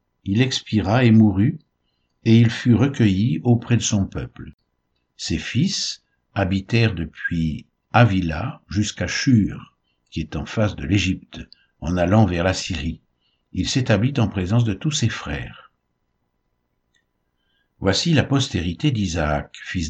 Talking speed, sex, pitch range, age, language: 130 wpm, male, 80-115 Hz, 60-79, French